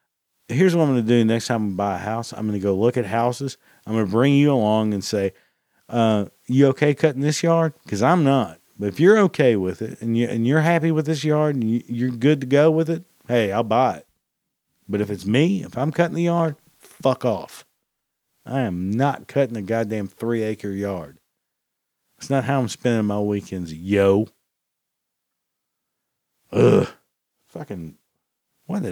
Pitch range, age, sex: 100-135 Hz, 50-69, male